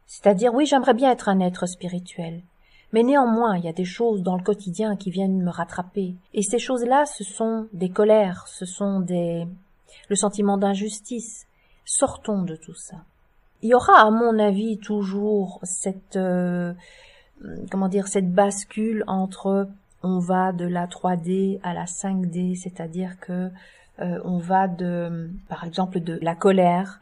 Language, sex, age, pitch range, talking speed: French, female, 40-59, 180-210 Hz, 160 wpm